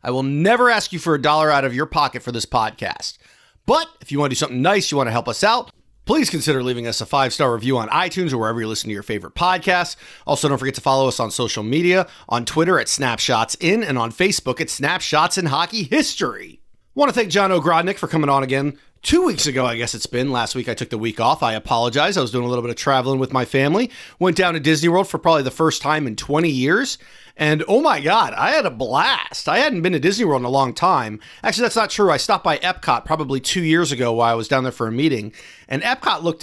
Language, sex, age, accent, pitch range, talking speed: English, male, 30-49, American, 120-175 Hz, 260 wpm